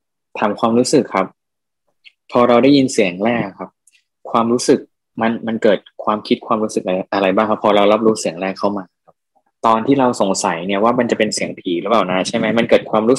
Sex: male